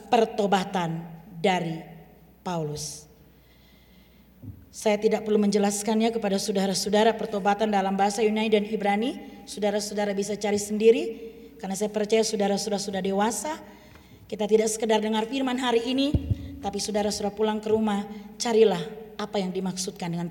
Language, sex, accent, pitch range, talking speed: Indonesian, female, native, 205-345 Hz, 125 wpm